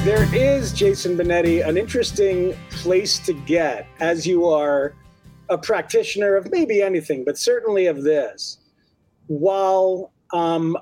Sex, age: male, 30-49